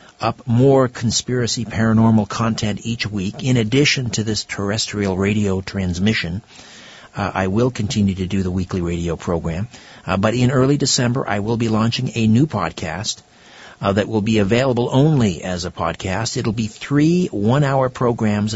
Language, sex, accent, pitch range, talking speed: English, male, American, 95-120 Hz, 165 wpm